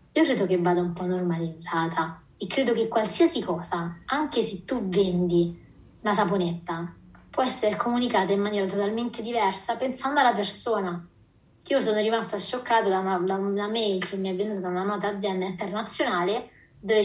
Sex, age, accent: female, 20-39, native